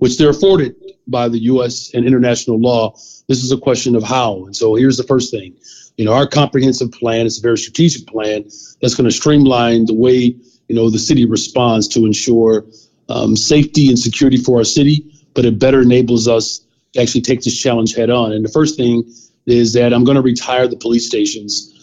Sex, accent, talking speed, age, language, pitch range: male, American, 205 wpm, 40-59, English, 115-125 Hz